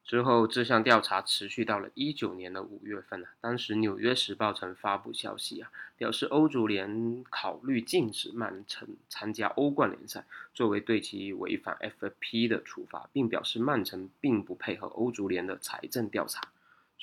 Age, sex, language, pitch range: 20-39, male, Chinese, 100-120 Hz